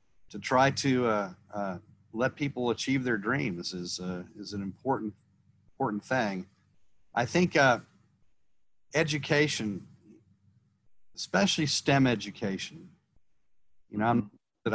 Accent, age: American, 50-69